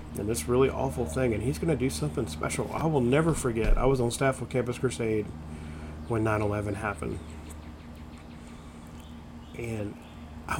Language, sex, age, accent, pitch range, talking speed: English, male, 40-59, American, 80-125 Hz, 160 wpm